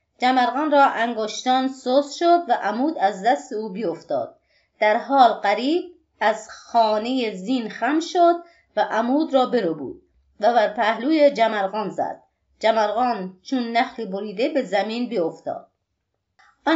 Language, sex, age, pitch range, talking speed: Persian, female, 30-49, 210-275 Hz, 130 wpm